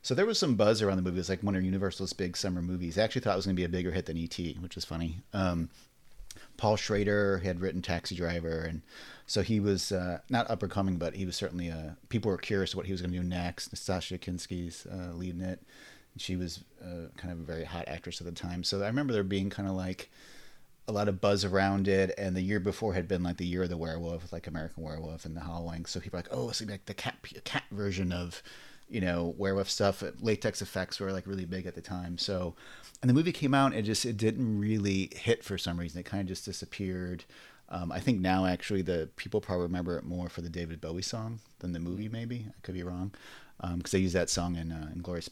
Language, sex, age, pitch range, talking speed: English, male, 30-49, 85-100 Hz, 255 wpm